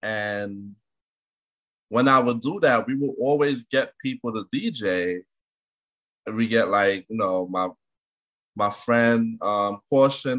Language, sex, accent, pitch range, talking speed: English, male, American, 105-145 Hz, 135 wpm